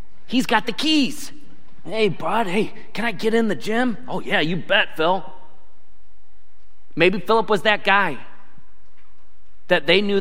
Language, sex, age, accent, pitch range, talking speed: English, male, 40-59, American, 165-215 Hz, 155 wpm